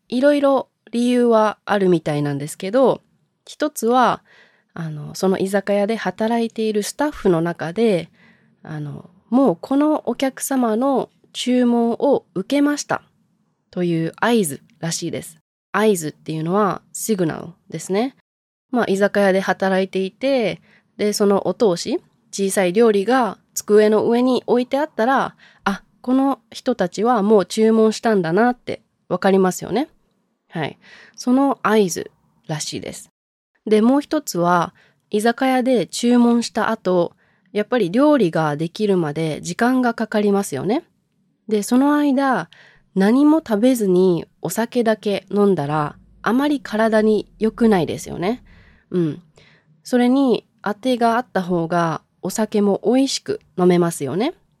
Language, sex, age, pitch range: English, female, 20-39, 185-240 Hz